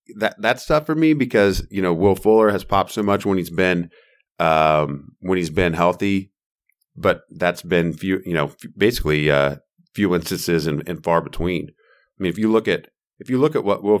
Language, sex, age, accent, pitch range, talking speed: English, male, 30-49, American, 75-95 Hz, 210 wpm